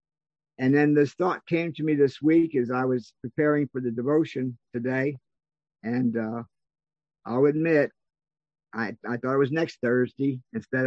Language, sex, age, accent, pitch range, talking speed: English, male, 50-69, American, 125-155 Hz, 160 wpm